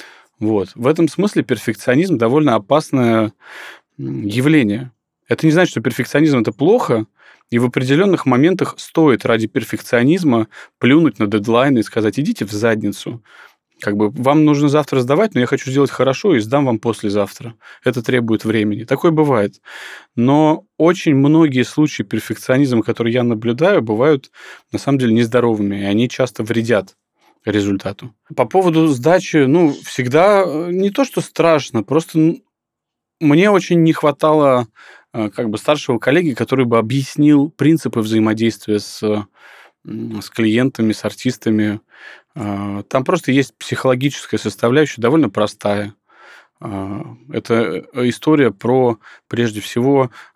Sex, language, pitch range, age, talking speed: male, Russian, 110-145 Hz, 20-39, 125 wpm